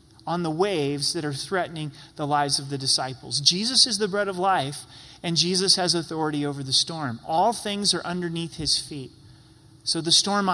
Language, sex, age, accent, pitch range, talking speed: English, male, 30-49, American, 145-200 Hz, 190 wpm